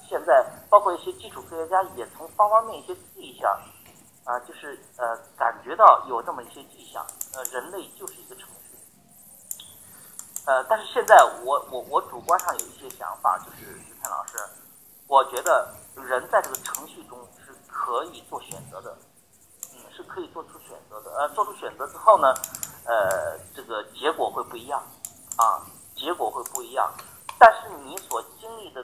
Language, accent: Chinese, native